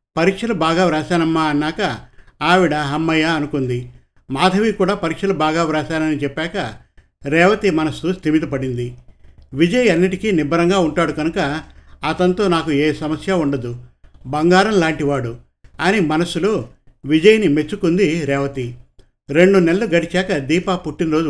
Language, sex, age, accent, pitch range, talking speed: Telugu, male, 50-69, native, 145-180 Hz, 105 wpm